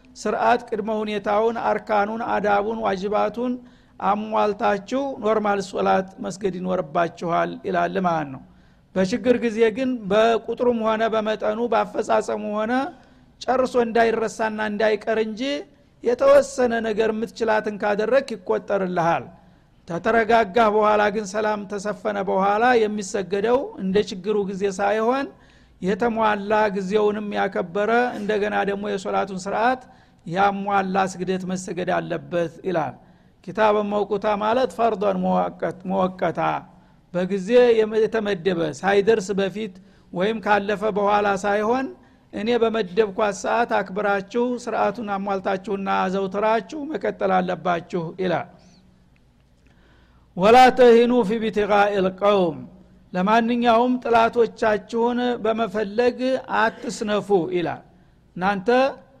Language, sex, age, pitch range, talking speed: Amharic, male, 50-69, 195-230 Hz, 90 wpm